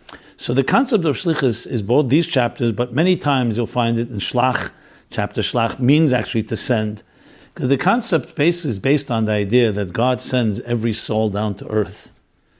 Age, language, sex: 50-69, English, male